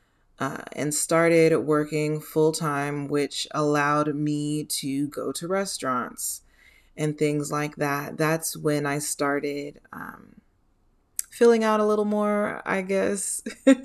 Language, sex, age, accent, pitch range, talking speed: English, female, 20-39, American, 145-165 Hz, 120 wpm